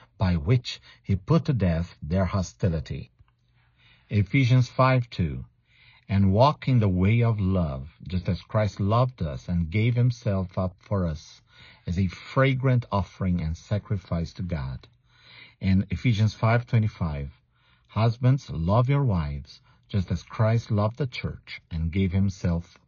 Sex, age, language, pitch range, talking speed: male, 50-69, English, 90-125 Hz, 140 wpm